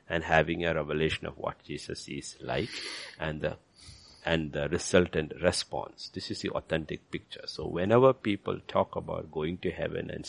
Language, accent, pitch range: English, Indian, 80-105 Hz